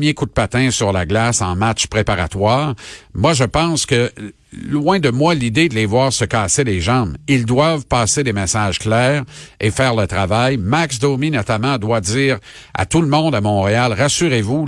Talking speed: 190 wpm